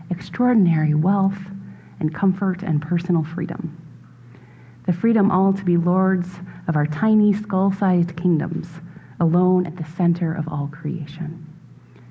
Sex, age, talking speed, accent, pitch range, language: female, 30-49, 125 wpm, American, 155-190 Hz, English